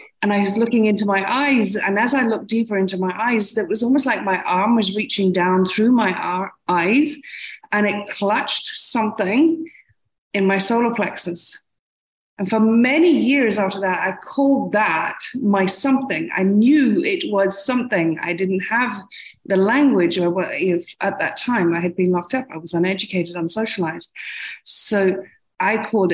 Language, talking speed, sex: English, 170 wpm, female